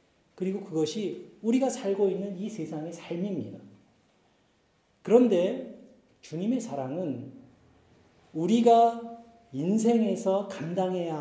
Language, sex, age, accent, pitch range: Korean, male, 40-59, native, 175-235 Hz